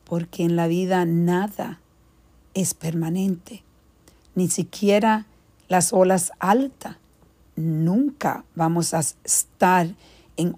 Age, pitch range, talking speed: 50-69, 165-195 Hz, 95 wpm